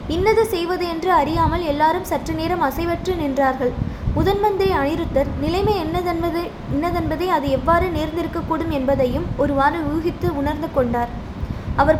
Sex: female